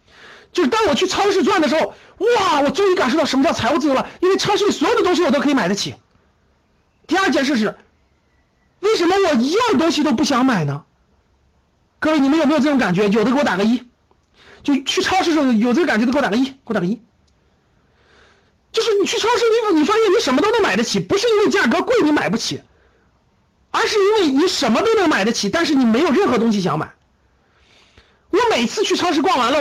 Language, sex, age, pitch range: Chinese, male, 50-69, 235-375 Hz